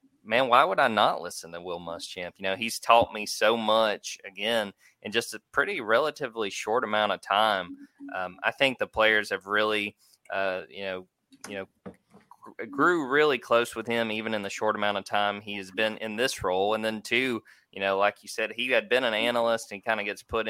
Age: 20-39